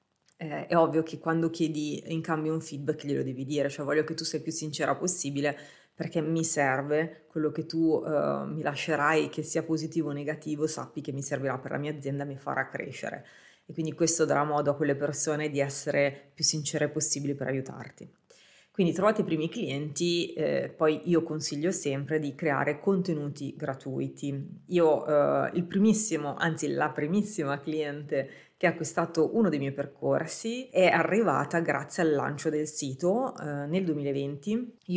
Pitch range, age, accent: 145-170 Hz, 30-49, native